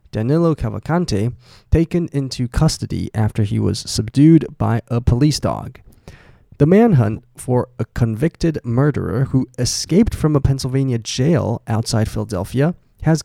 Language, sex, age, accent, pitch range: Chinese, male, 20-39, American, 110-135 Hz